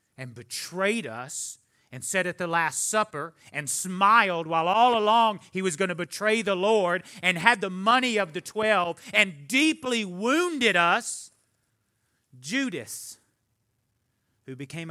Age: 40-59